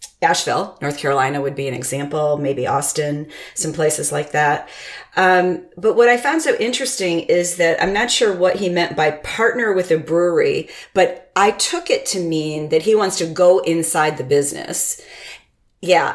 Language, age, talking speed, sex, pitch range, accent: English, 40-59, 180 wpm, female, 155-195 Hz, American